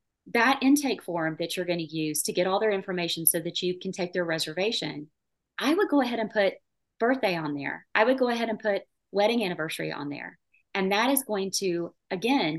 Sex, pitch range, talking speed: female, 170-220 Hz, 215 wpm